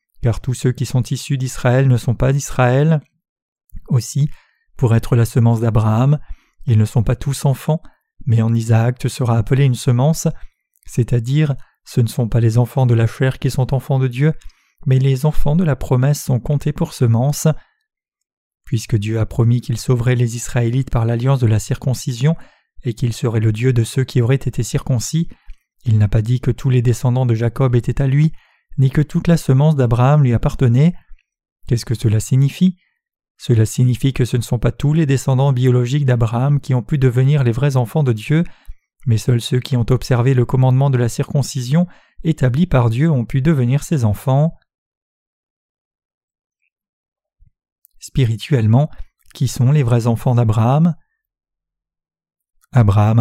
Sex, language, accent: male, French, French